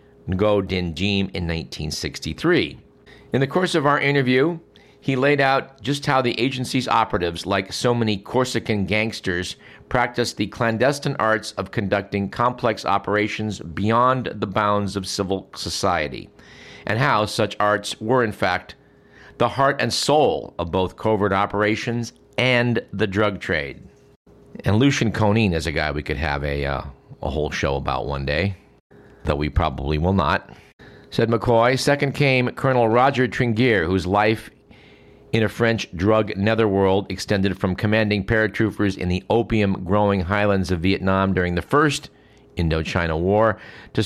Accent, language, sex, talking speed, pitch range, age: American, English, male, 145 wpm, 95-115 Hz, 50-69